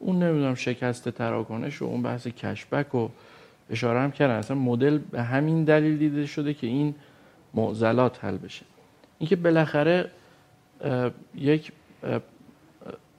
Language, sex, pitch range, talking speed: Persian, male, 115-135 Hz, 125 wpm